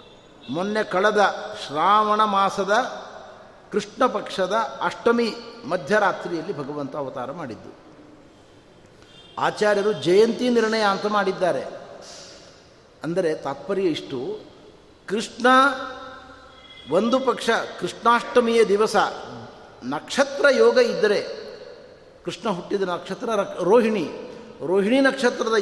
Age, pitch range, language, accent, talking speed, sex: 60-79, 195-260 Hz, Kannada, native, 75 wpm, male